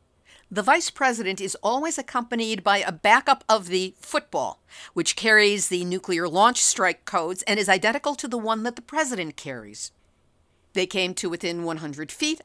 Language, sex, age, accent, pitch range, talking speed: English, female, 50-69, American, 185-235 Hz, 170 wpm